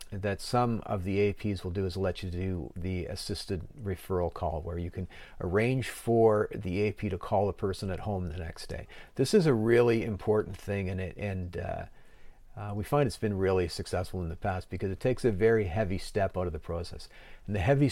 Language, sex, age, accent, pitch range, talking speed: English, male, 40-59, American, 90-115 Hz, 220 wpm